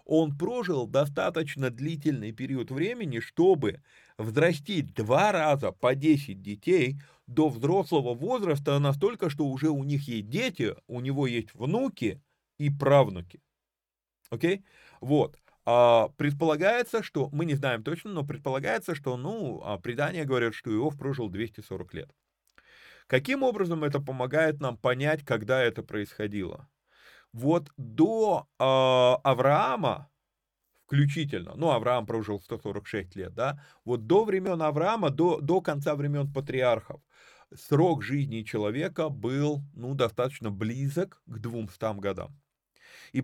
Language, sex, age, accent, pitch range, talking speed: Russian, male, 30-49, native, 115-155 Hz, 125 wpm